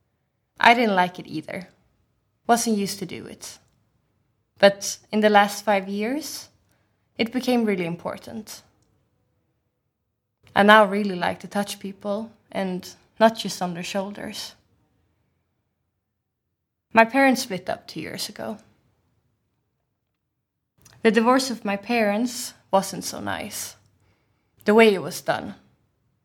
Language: Dutch